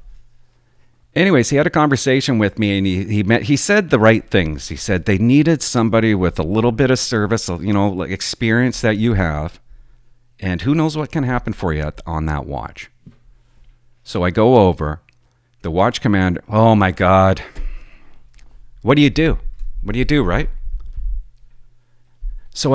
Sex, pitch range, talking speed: male, 100-125 Hz, 170 wpm